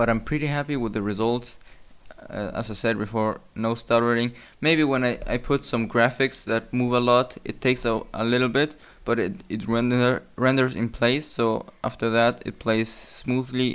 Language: English